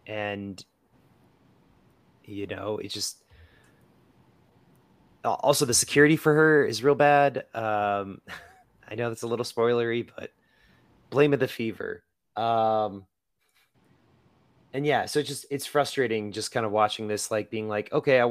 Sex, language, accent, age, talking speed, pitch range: male, English, American, 30-49, 140 wpm, 105-125 Hz